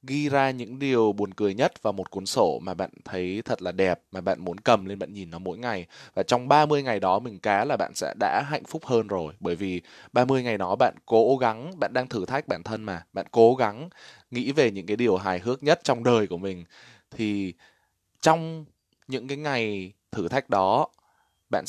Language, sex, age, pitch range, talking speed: Vietnamese, male, 20-39, 95-120 Hz, 225 wpm